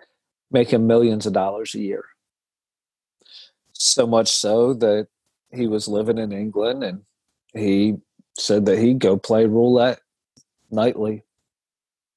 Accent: American